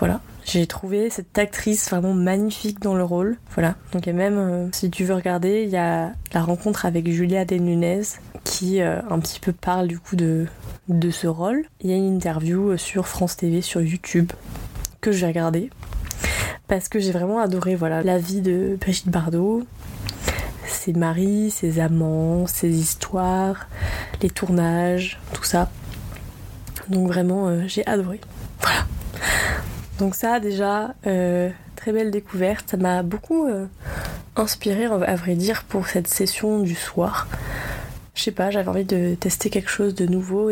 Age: 20-39